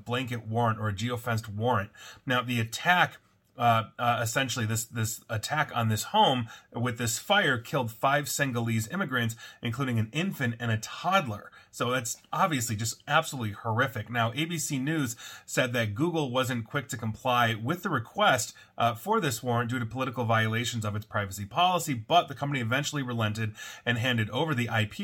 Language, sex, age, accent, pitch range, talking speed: English, male, 30-49, American, 115-135 Hz, 175 wpm